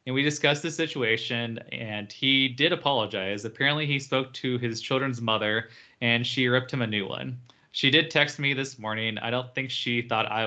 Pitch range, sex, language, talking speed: 115-135 Hz, male, English, 200 wpm